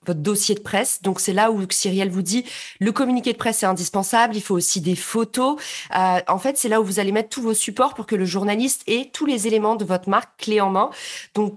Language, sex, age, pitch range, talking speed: French, female, 30-49, 195-230 Hz, 255 wpm